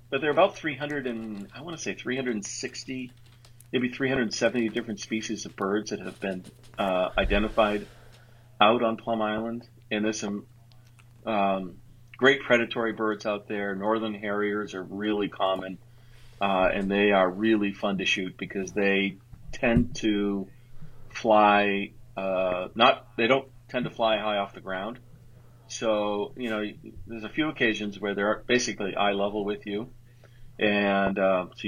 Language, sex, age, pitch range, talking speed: English, male, 40-59, 100-120 Hz, 155 wpm